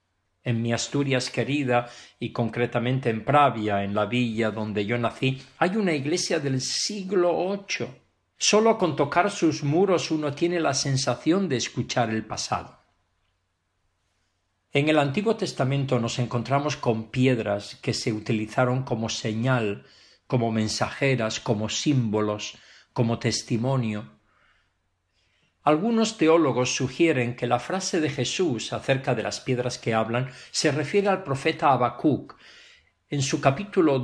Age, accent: 50-69, Spanish